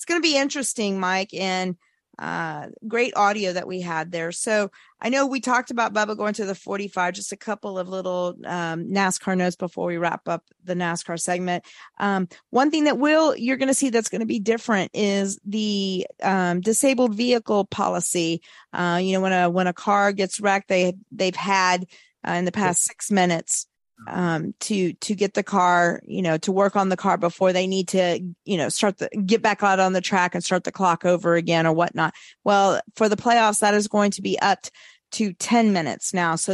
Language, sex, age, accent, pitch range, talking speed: English, female, 40-59, American, 175-215 Hz, 210 wpm